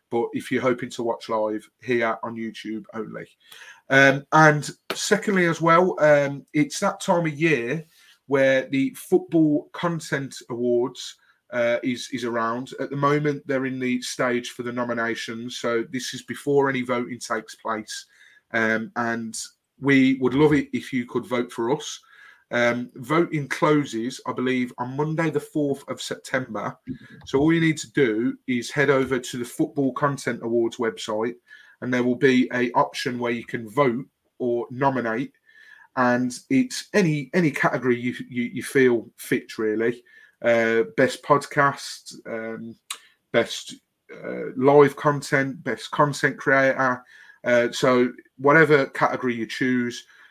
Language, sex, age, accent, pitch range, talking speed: English, male, 30-49, British, 120-150 Hz, 150 wpm